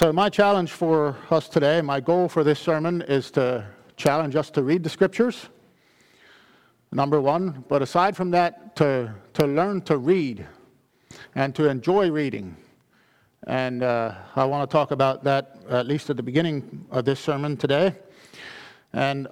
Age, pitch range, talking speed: 50-69, 140-185 Hz, 160 wpm